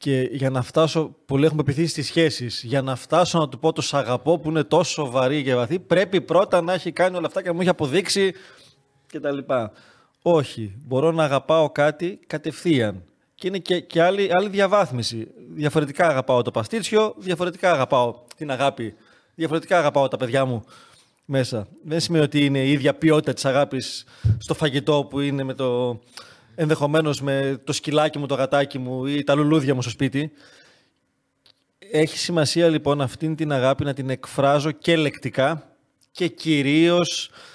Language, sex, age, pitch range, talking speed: Greek, male, 20-39, 130-160 Hz, 175 wpm